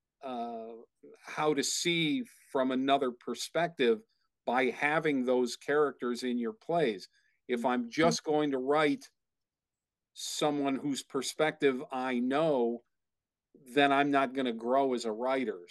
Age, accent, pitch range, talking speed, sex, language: 50-69, American, 125-160 Hz, 130 wpm, male, English